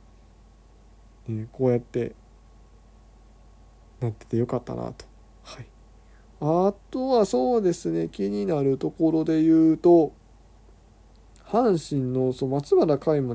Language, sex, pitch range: Japanese, male, 120-180 Hz